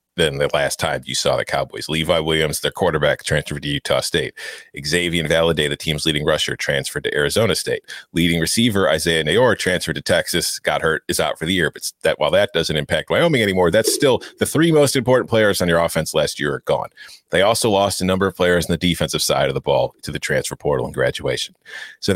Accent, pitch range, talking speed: American, 80-100 Hz, 225 wpm